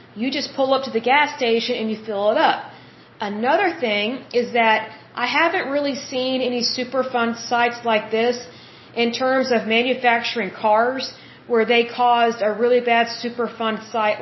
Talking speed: 175 wpm